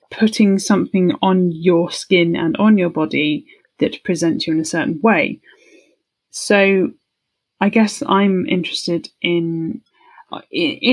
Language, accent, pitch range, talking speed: English, British, 170-230 Hz, 125 wpm